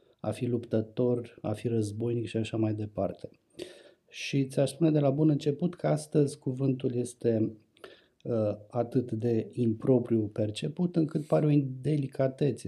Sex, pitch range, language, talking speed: male, 115-140 Hz, Romanian, 145 wpm